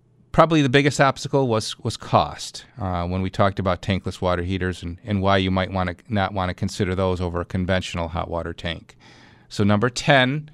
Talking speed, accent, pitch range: 205 wpm, American, 100-135 Hz